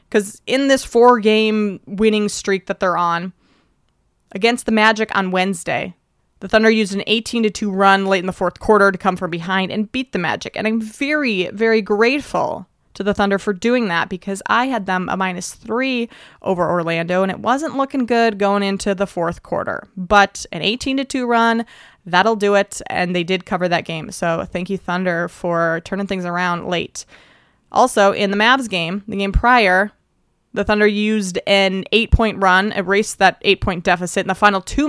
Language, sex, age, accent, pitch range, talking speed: English, female, 20-39, American, 185-220 Hz, 185 wpm